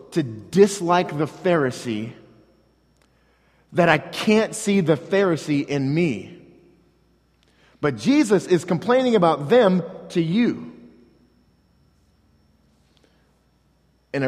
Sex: male